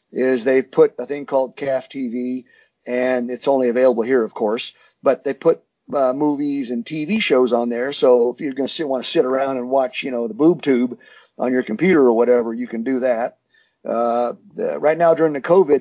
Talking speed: 215 wpm